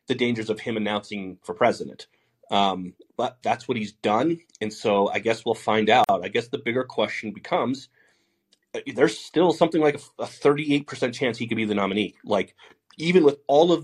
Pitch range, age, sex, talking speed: 105-145 Hz, 30-49, male, 190 wpm